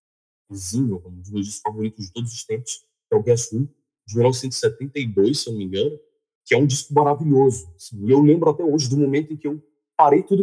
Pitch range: 100-140 Hz